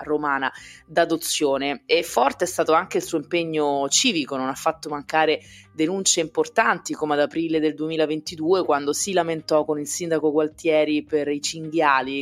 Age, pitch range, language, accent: 20-39, 140-165 Hz, Italian, native